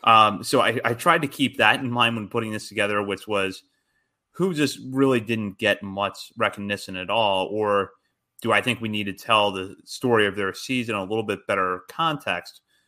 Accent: American